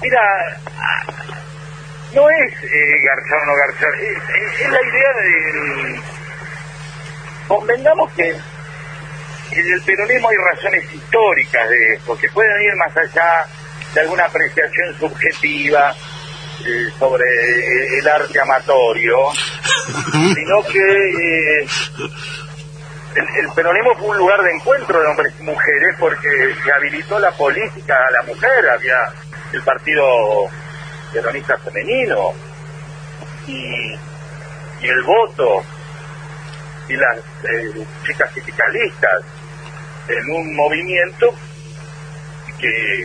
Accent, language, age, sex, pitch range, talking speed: Argentinian, Spanish, 40-59, male, 150-160 Hz, 110 wpm